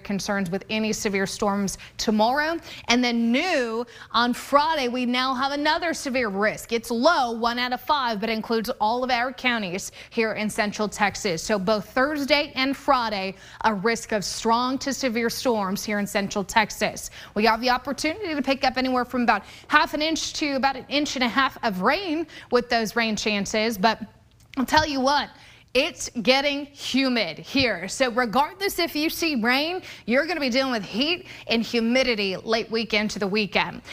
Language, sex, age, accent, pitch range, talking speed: English, female, 20-39, American, 220-280 Hz, 185 wpm